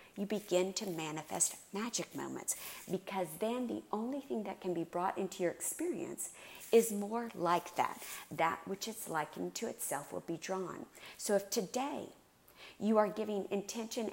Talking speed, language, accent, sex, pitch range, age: 160 wpm, English, American, female, 175-215 Hz, 50-69